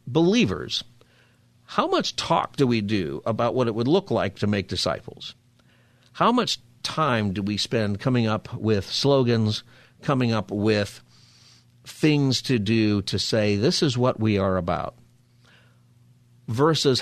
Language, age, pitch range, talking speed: English, 50-69, 105-130 Hz, 145 wpm